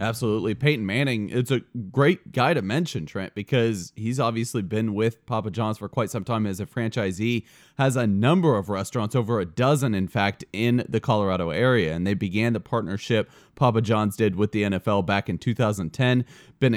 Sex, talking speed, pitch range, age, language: male, 190 wpm, 110-140 Hz, 30-49, English